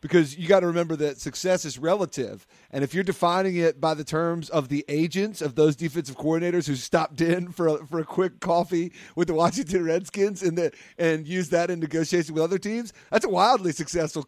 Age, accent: 40-59, American